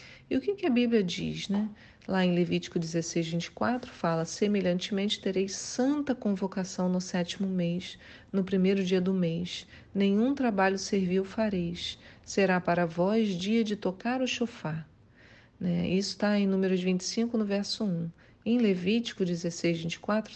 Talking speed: 150 wpm